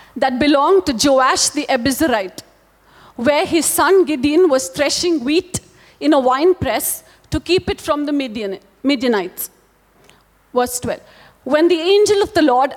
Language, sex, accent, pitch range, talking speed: English, female, Indian, 270-340 Hz, 145 wpm